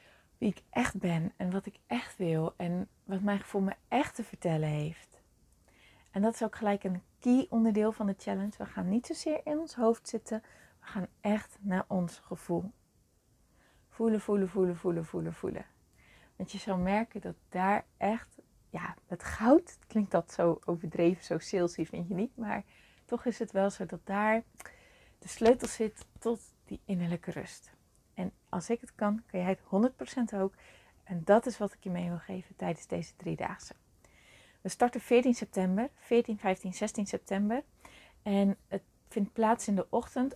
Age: 30-49